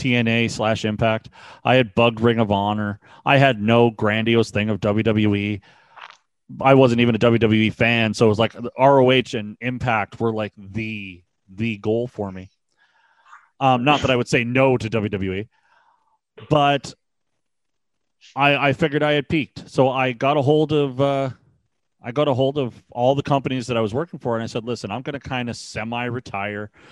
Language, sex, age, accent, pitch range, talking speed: English, male, 30-49, American, 110-140 Hz, 185 wpm